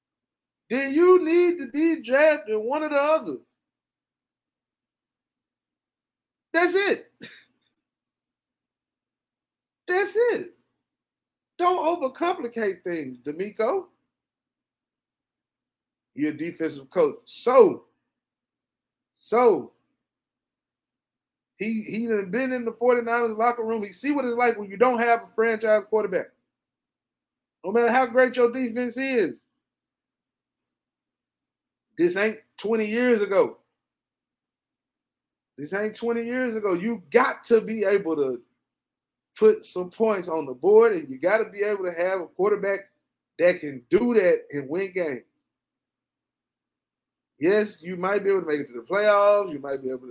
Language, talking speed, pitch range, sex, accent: English, 125 wpm, 205-300 Hz, male, American